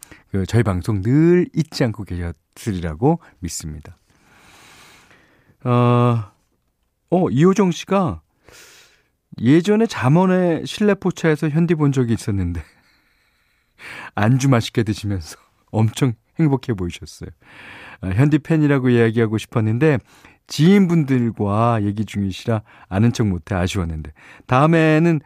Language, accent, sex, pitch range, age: Korean, native, male, 100-155 Hz, 40-59